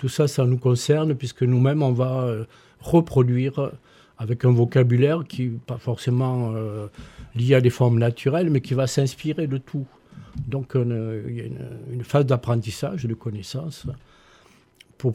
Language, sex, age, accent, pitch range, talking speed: French, male, 50-69, French, 115-135 Hz, 160 wpm